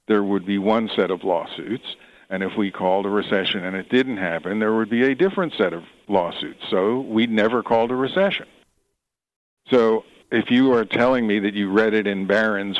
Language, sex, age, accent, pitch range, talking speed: English, male, 60-79, American, 95-110 Hz, 200 wpm